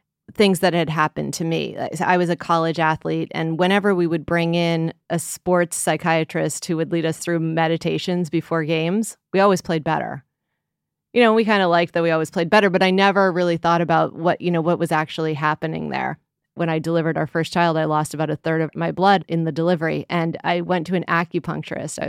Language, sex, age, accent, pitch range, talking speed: English, female, 30-49, American, 160-190 Hz, 215 wpm